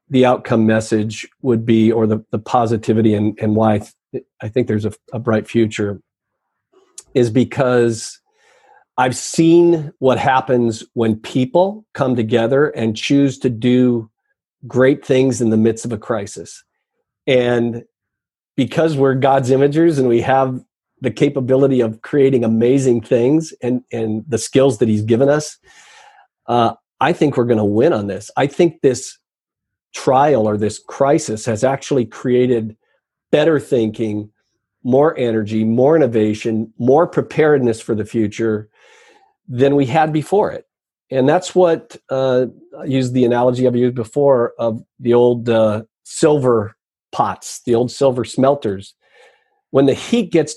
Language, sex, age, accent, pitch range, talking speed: English, male, 40-59, American, 110-140 Hz, 155 wpm